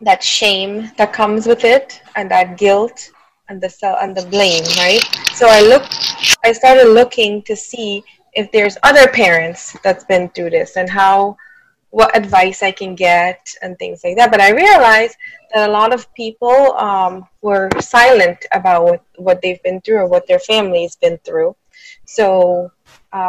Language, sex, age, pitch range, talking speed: English, female, 20-39, 190-245 Hz, 175 wpm